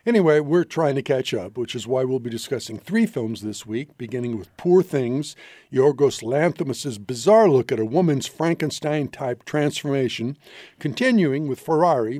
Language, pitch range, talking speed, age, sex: English, 130-175 Hz, 160 wpm, 60-79, male